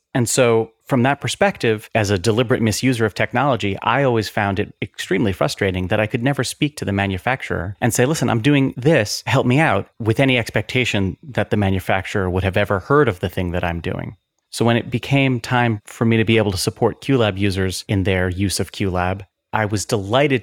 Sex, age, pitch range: male, 30-49, 100-120 Hz